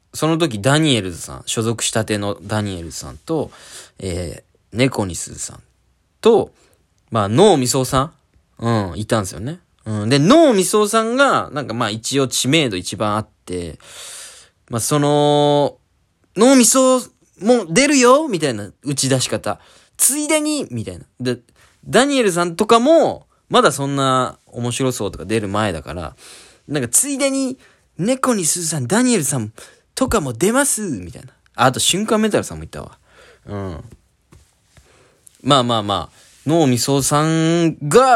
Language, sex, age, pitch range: Japanese, male, 20-39, 105-175 Hz